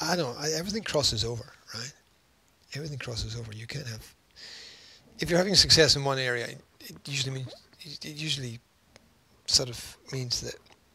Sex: male